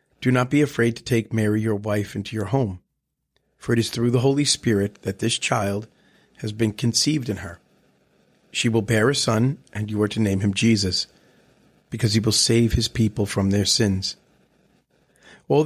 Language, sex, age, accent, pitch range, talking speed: English, male, 40-59, American, 105-125 Hz, 190 wpm